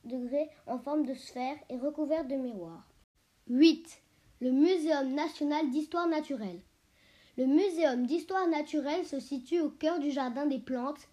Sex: female